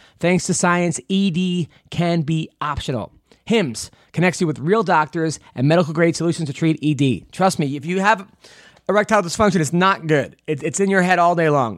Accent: American